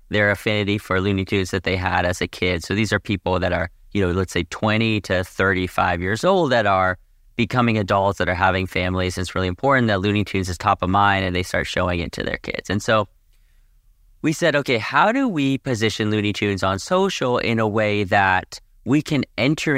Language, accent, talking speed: English, American, 220 wpm